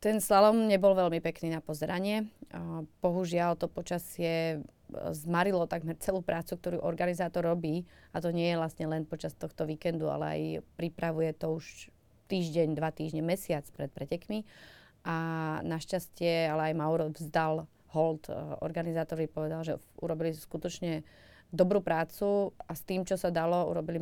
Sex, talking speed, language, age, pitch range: female, 145 wpm, Slovak, 30-49, 160-180 Hz